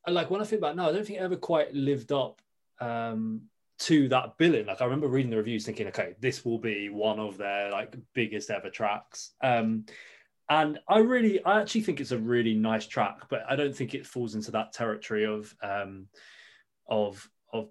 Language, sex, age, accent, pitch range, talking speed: English, male, 20-39, British, 110-150 Hz, 200 wpm